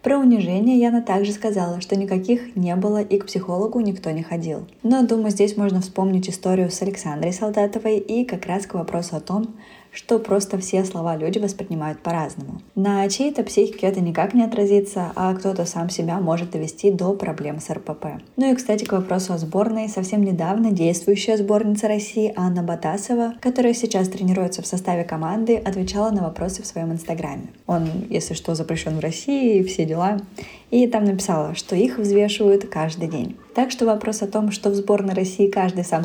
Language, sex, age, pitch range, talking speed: Russian, female, 20-39, 175-215 Hz, 180 wpm